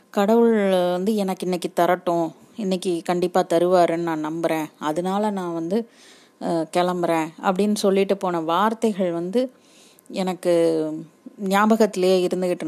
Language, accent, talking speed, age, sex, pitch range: Tamil, native, 105 wpm, 30-49, female, 175-205 Hz